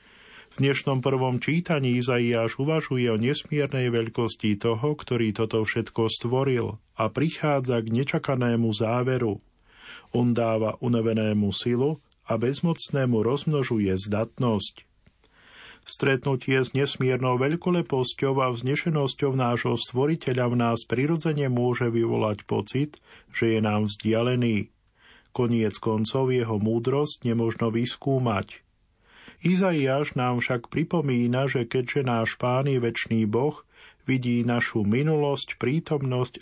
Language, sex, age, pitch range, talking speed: Slovak, male, 40-59, 115-135 Hz, 110 wpm